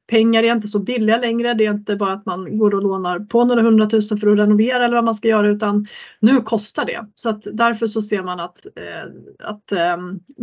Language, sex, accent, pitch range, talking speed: Swedish, female, native, 205-235 Hz, 230 wpm